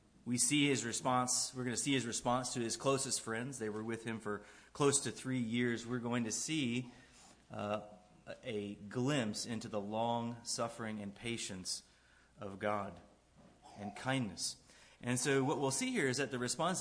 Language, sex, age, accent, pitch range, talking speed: English, male, 30-49, American, 105-125 Hz, 180 wpm